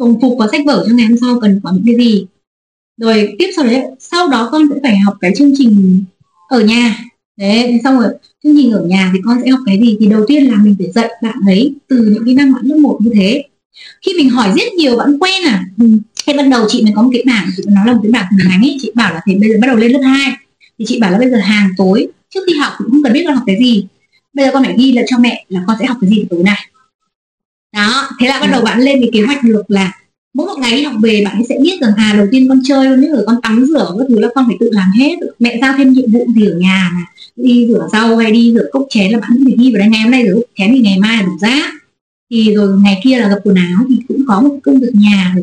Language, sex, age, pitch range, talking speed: Vietnamese, female, 20-39, 210-265 Hz, 295 wpm